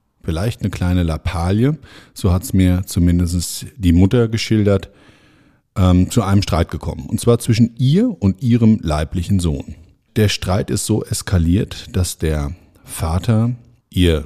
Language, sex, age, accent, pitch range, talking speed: German, male, 50-69, German, 85-110 Hz, 145 wpm